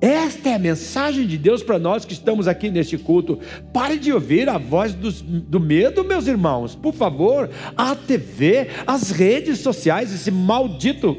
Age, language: 60-79, Portuguese